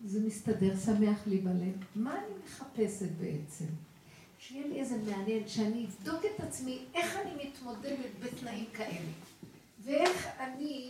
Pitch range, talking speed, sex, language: 210-280 Hz, 130 wpm, female, Hebrew